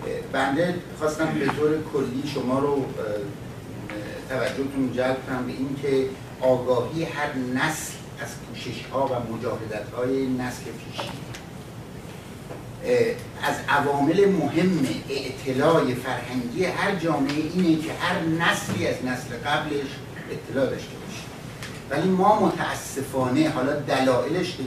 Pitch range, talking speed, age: 125-155 Hz, 110 wpm, 60-79